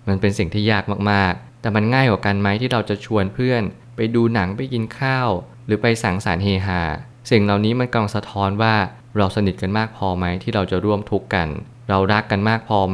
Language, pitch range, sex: Thai, 95-115 Hz, male